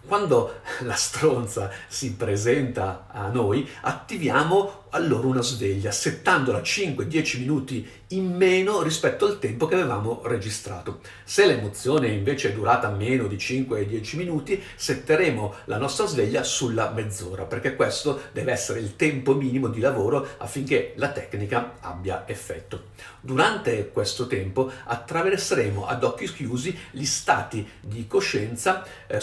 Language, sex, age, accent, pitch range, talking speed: Italian, male, 50-69, native, 105-140 Hz, 130 wpm